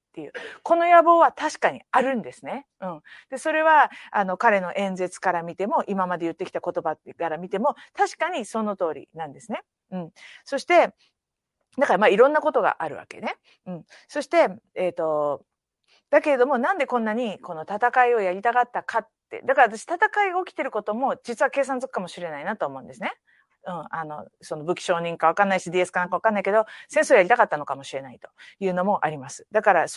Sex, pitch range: female, 180-275 Hz